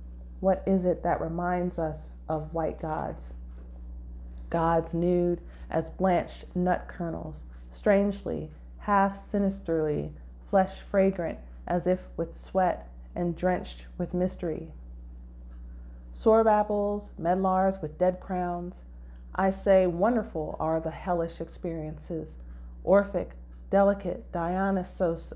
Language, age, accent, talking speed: English, 30-49, American, 105 wpm